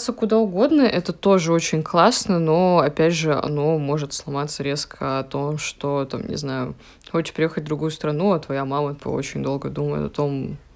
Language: Russian